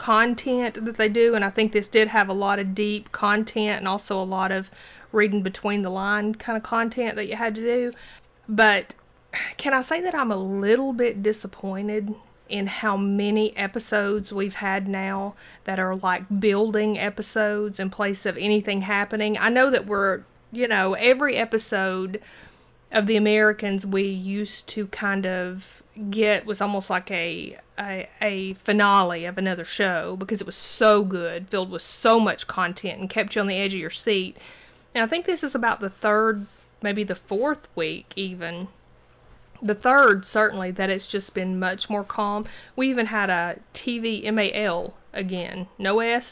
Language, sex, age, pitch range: English, female, 30-49, 195-220 Hz